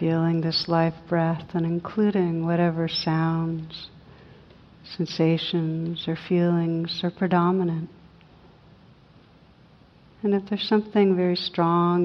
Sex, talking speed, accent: female, 95 wpm, American